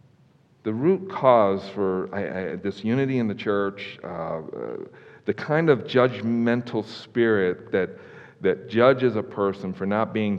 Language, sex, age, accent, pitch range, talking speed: English, male, 50-69, American, 110-130 Hz, 145 wpm